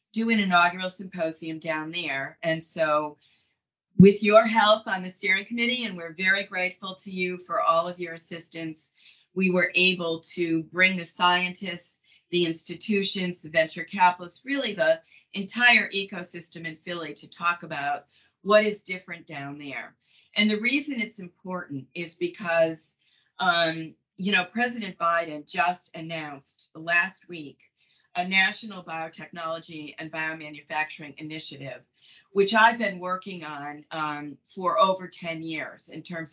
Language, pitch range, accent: English, 160-190 Hz, American